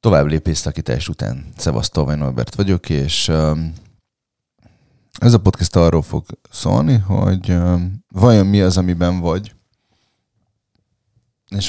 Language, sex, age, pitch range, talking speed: Hungarian, male, 30-49, 85-105 Hz, 120 wpm